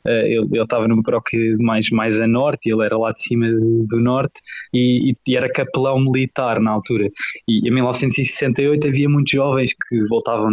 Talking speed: 190 wpm